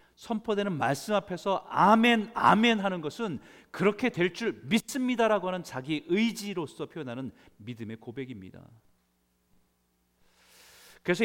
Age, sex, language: 40-59, male, Korean